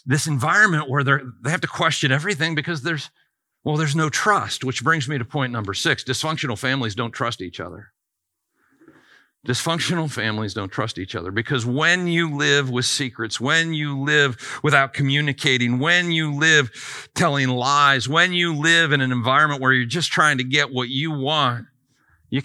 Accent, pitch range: American, 125-160 Hz